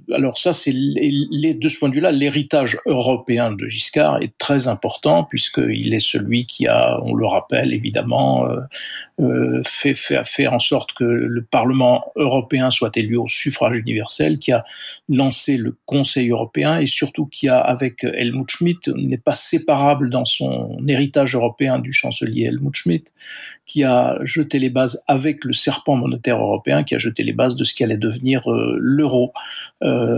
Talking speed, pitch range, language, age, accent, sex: 175 wpm, 120-145 Hz, French, 50-69, French, male